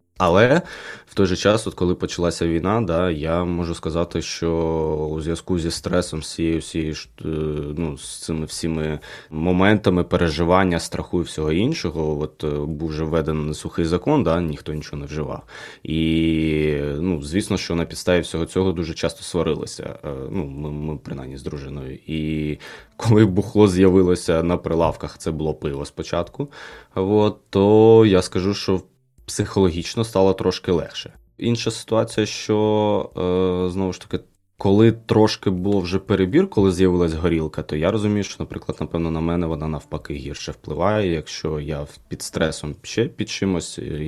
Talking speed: 150 wpm